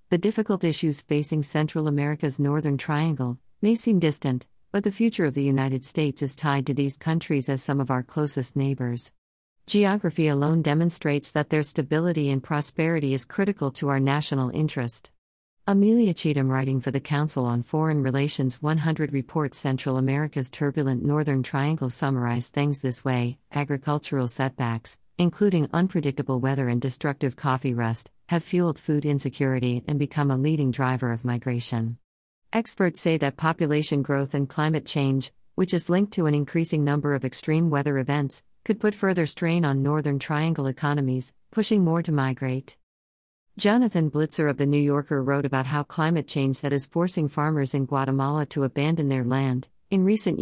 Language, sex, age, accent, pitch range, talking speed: English, female, 50-69, American, 130-160 Hz, 165 wpm